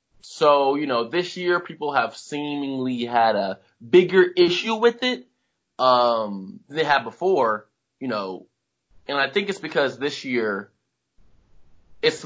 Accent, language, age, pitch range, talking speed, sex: American, English, 20-39, 120-175 Hz, 140 wpm, male